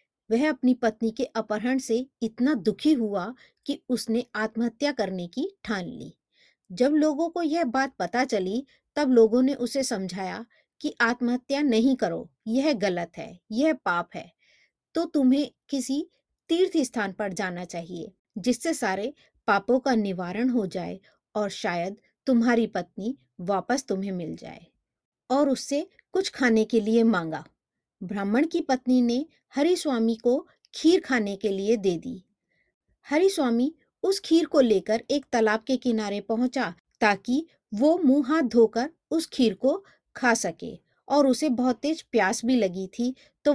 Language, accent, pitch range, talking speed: Hindi, native, 210-275 Hz, 155 wpm